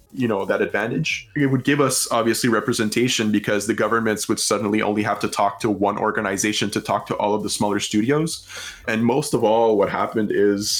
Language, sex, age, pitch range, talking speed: English, male, 20-39, 105-120 Hz, 205 wpm